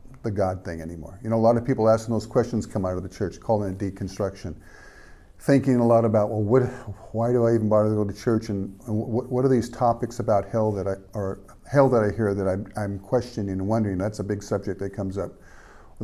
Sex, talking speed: male, 245 wpm